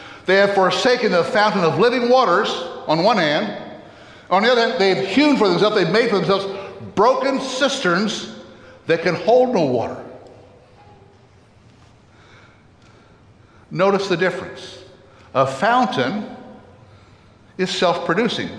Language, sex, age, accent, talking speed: English, male, 60-79, American, 120 wpm